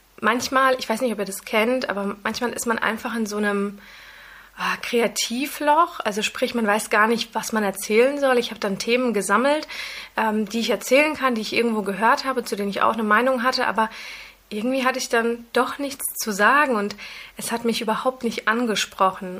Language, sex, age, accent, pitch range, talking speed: German, female, 20-39, German, 215-250 Hz, 200 wpm